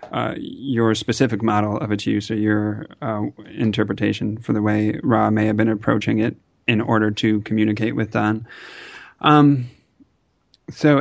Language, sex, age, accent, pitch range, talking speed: English, male, 30-49, American, 110-130 Hz, 155 wpm